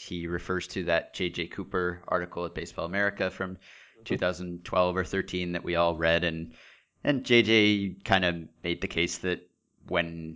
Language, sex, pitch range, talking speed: English, male, 90-110 Hz, 160 wpm